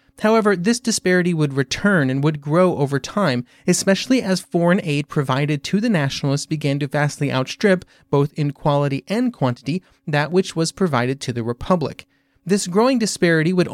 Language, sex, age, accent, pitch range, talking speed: English, male, 30-49, American, 145-190 Hz, 165 wpm